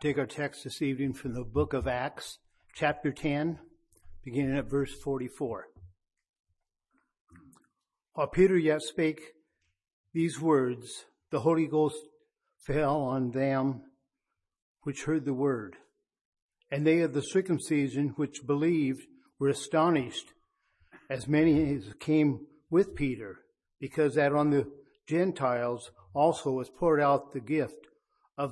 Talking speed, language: 125 wpm, English